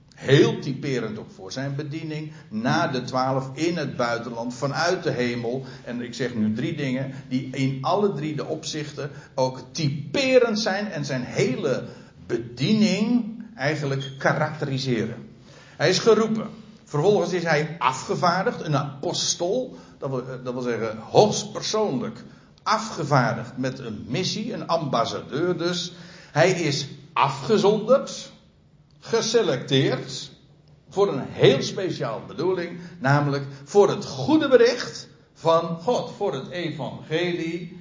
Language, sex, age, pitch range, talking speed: Dutch, male, 60-79, 125-175 Hz, 120 wpm